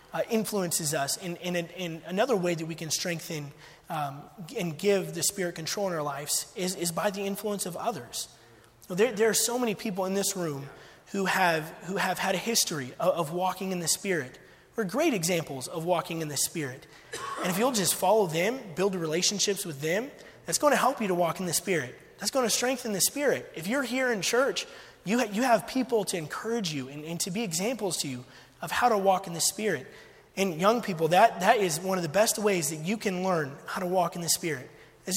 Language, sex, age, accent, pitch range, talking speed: English, male, 20-39, American, 165-220 Hz, 230 wpm